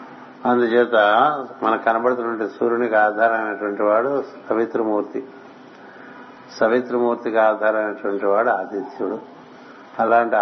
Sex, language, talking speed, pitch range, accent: male, Telugu, 70 wpm, 105-120 Hz, native